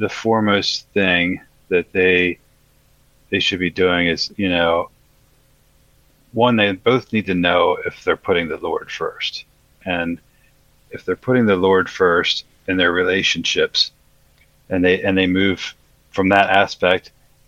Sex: male